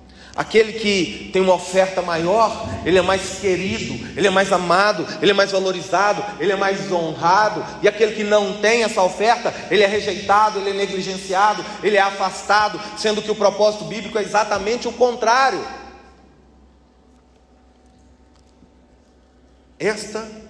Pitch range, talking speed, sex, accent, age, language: 190-230 Hz, 140 wpm, male, Brazilian, 40-59, Portuguese